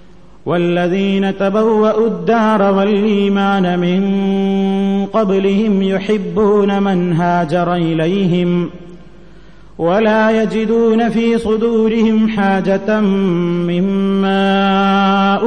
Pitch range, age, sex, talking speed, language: 145-195 Hz, 30-49, male, 60 wpm, Malayalam